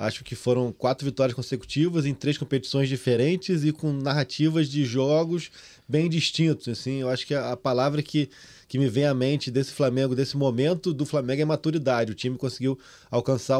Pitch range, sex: 135-155 Hz, male